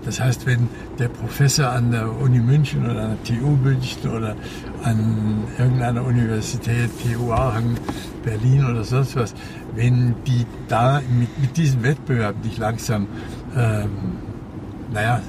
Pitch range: 110-130 Hz